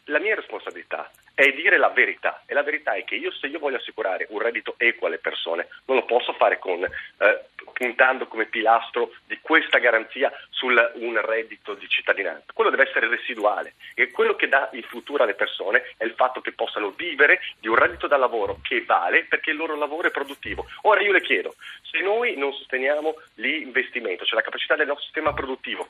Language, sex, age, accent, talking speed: Italian, male, 40-59, native, 200 wpm